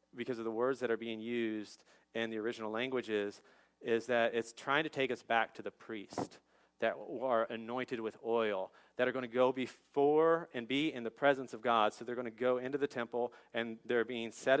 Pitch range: 110-130 Hz